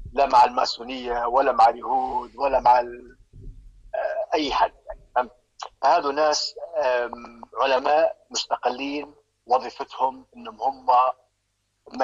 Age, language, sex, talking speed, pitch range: 50-69, Arabic, male, 95 wpm, 105-155 Hz